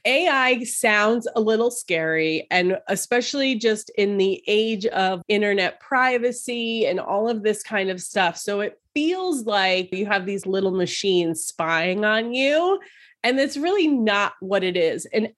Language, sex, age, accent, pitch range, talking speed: English, female, 30-49, American, 180-245 Hz, 160 wpm